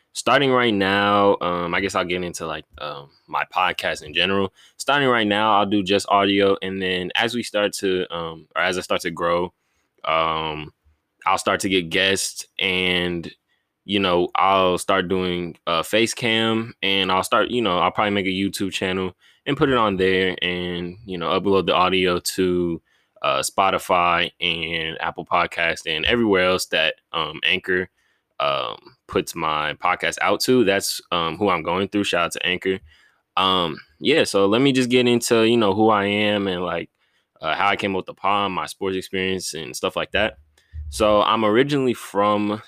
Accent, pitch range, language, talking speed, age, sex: American, 90-105 Hz, English, 190 wpm, 10-29, male